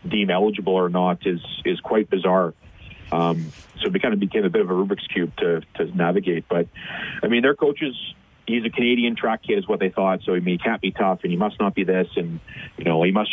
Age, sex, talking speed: 30-49, male, 250 wpm